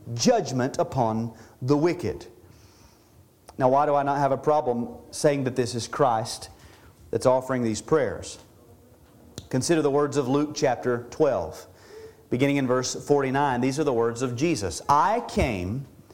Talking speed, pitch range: 150 wpm, 125-170 Hz